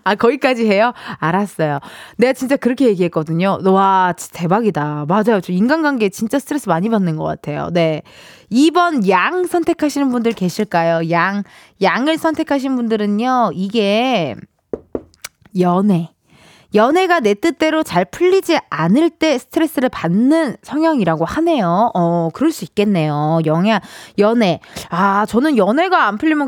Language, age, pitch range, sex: Korean, 20-39, 180-295 Hz, female